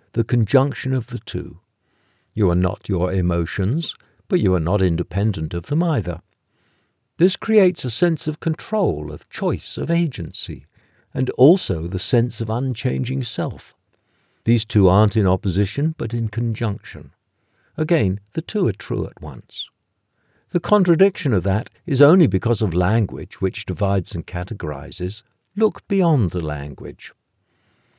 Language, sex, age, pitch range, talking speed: English, male, 60-79, 95-140 Hz, 145 wpm